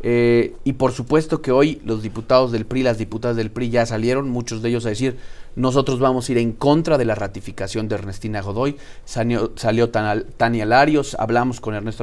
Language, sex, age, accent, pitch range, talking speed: Spanish, male, 40-59, Mexican, 115-145 Hz, 200 wpm